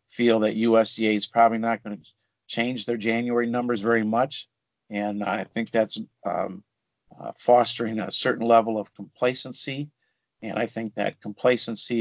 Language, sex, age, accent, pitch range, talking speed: English, male, 50-69, American, 110-120 Hz, 150 wpm